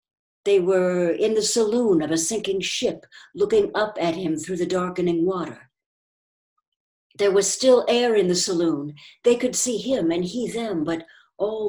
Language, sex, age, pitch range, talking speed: English, female, 60-79, 170-225 Hz, 170 wpm